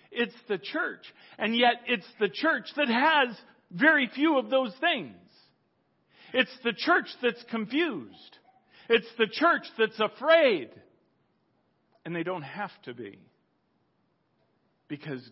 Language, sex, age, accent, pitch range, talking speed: English, male, 50-69, American, 150-225 Hz, 125 wpm